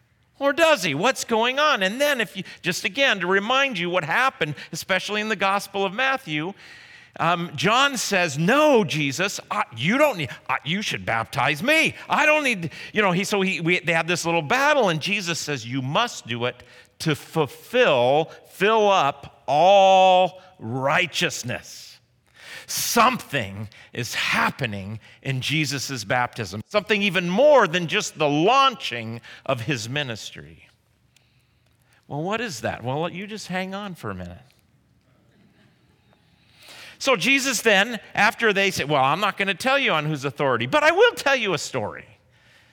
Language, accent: English, American